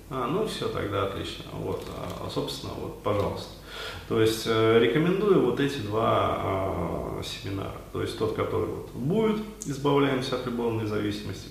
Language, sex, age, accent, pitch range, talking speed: Russian, male, 30-49, native, 100-135 Hz, 140 wpm